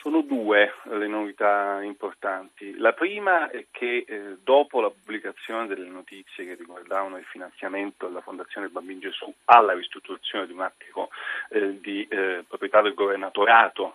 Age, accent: 40-59, native